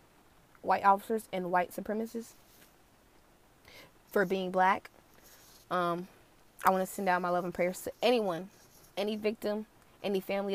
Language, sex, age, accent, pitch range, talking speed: English, female, 20-39, American, 170-195 Hz, 135 wpm